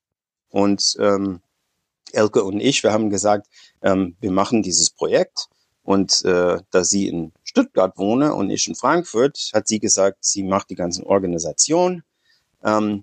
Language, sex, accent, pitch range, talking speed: German, male, German, 105-145 Hz, 150 wpm